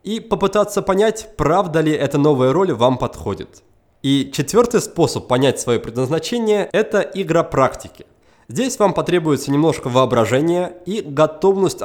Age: 20-39